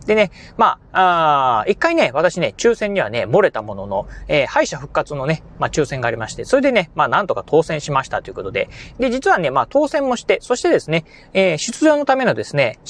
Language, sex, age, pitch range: Japanese, male, 30-49, 150-255 Hz